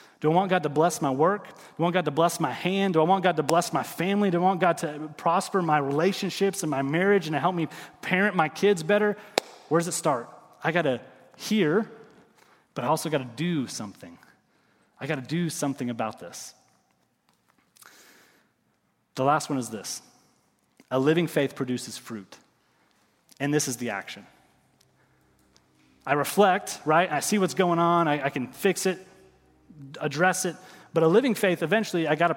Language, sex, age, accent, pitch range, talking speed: English, male, 30-49, American, 130-180 Hz, 190 wpm